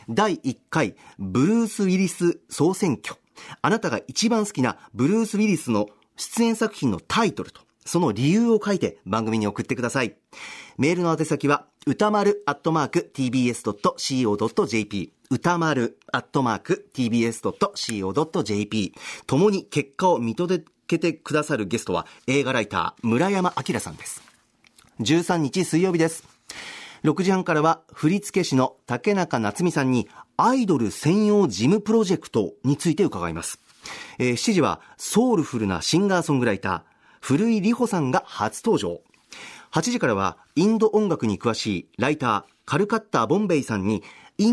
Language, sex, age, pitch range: Japanese, male, 40-59, 120-195 Hz